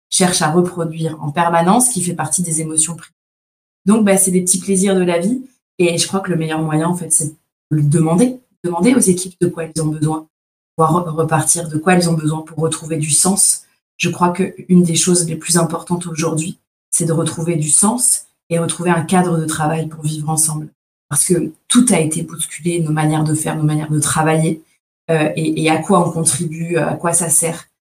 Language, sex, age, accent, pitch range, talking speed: French, female, 20-39, French, 160-180 Hz, 215 wpm